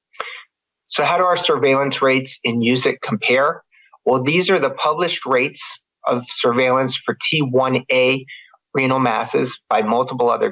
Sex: male